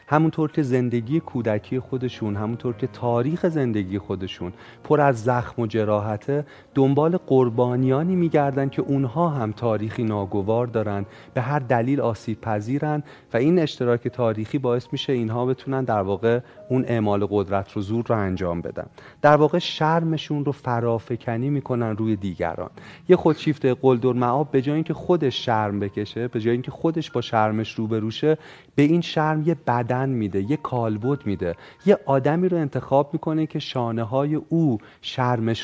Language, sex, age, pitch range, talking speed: Persian, male, 40-59, 115-150 Hz, 155 wpm